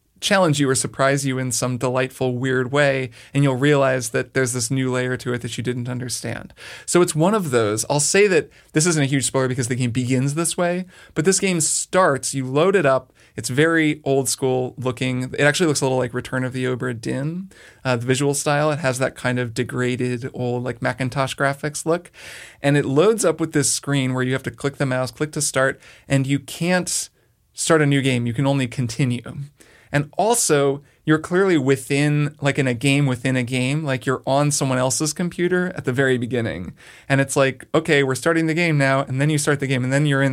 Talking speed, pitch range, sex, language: 225 wpm, 130-155 Hz, male, English